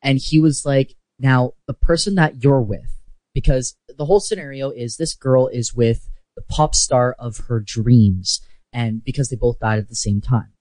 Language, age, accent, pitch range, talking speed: English, 20-39, American, 115-150 Hz, 190 wpm